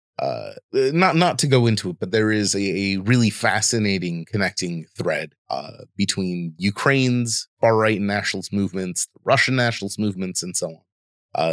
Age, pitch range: 30-49, 95-120 Hz